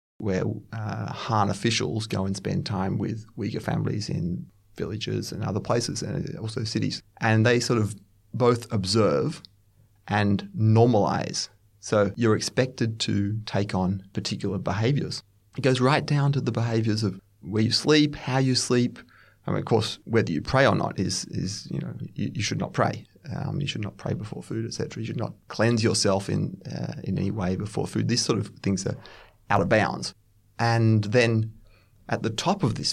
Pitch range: 105-120 Hz